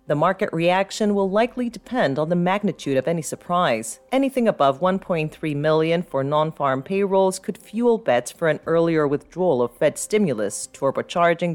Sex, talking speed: female, 155 wpm